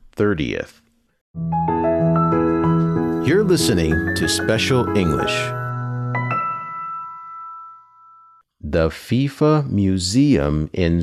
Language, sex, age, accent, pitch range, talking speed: English, male, 50-69, American, 80-135 Hz, 55 wpm